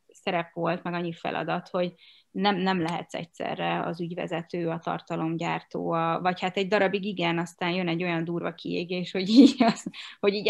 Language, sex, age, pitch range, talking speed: Hungarian, female, 20-39, 170-200 Hz, 175 wpm